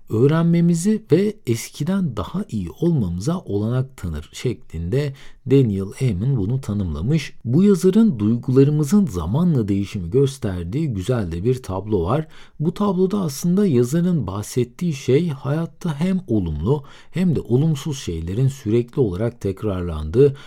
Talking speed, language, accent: 115 wpm, Turkish, native